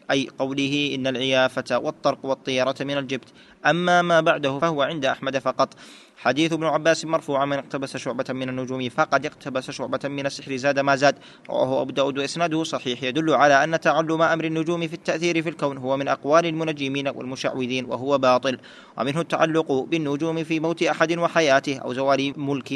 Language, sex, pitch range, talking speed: Arabic, male, 130-155 Hz, 165 wpm